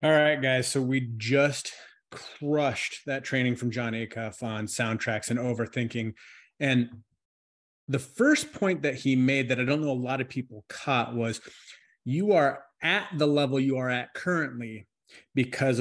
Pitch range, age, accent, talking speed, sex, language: 125-150 Hz, 30-49, American, 165 wpm, male, English